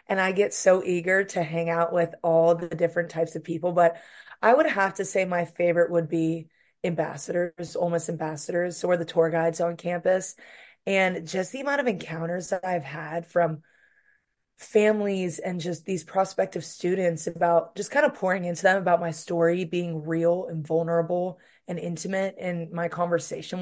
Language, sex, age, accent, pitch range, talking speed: English, female, 20-39, American, 165-185 Hz, 175 wpm